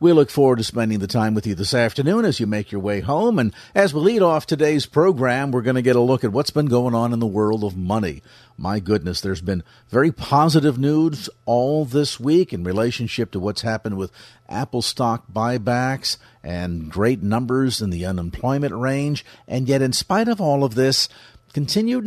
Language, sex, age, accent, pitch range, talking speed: English, male, 50-69, American, 115-145 Hz, 205 wpm